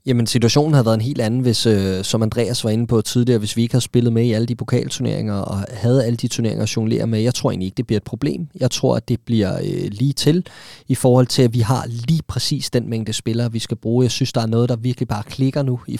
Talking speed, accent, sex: 280 wpm, native, male